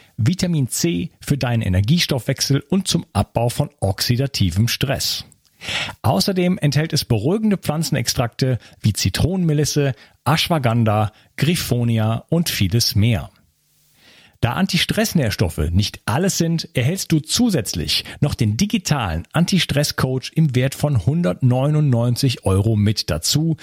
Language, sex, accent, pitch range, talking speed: German, male, German, 110-160 Hz, 110 wpm